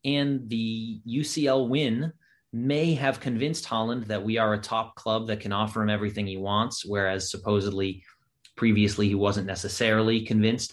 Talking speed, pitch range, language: 155 wpm, 100-115 Hz, English